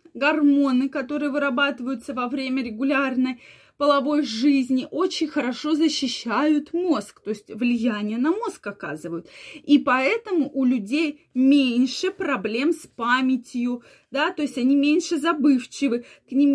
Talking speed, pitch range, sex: 125 wpm, 245-305 Hz, female